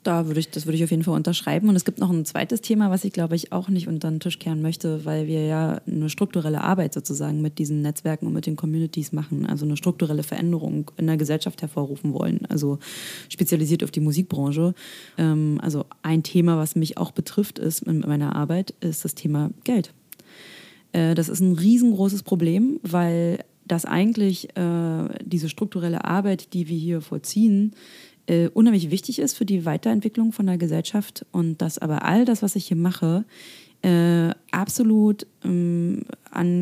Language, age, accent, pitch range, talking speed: German, 20-39, German, 165-210 Hz, 180 wpm